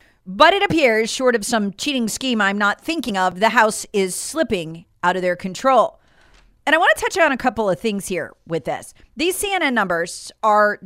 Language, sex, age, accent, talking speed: English, female, 40-59, American, 205 wpm